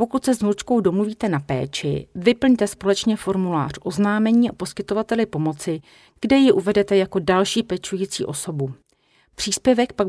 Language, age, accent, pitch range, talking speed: Czech, 40-59, native, 165-210 Hz, 135 wpm